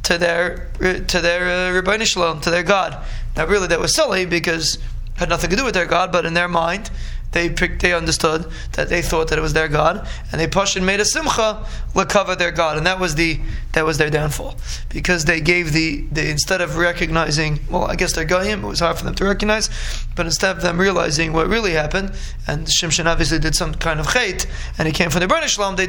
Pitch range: 160-190 Hz